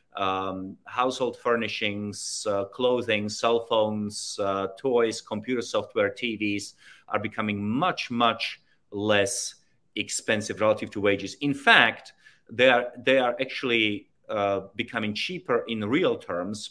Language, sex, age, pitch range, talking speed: English, male, 30-49, 100-130 Hz, 120 wpm